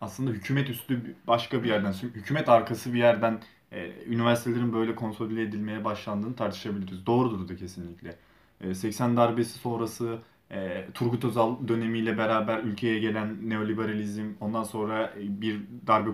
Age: 20-39